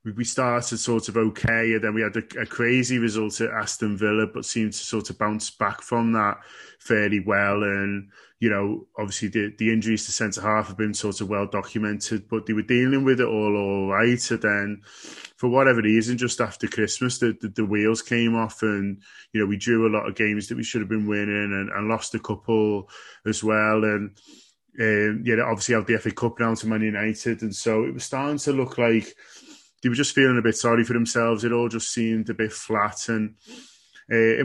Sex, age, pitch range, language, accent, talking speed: male, 20-39, 105-120 Hz, English, British, 225 wpm